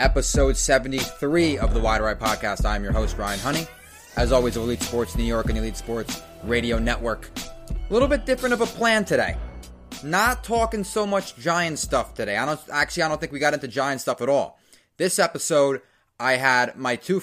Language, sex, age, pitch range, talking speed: English, male, 20-39, 120-165 Hz, 200 wpm